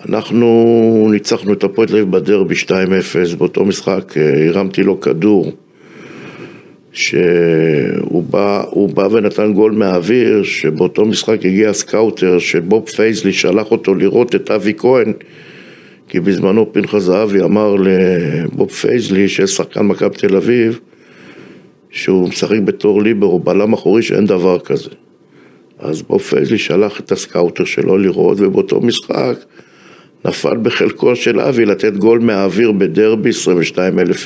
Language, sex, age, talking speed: Hebrew, male, 60-79, 125 wpm